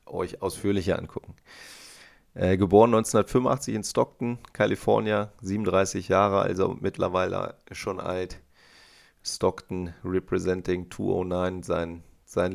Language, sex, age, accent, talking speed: German, male, 30-49, German, 95 wpm